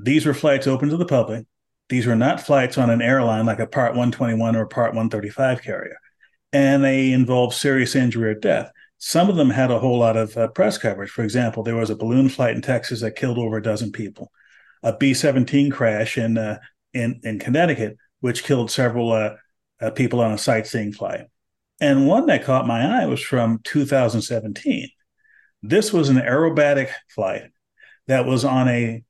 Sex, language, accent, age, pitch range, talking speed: male, English, American, 40-59, 115-135 Hz, 190 wpm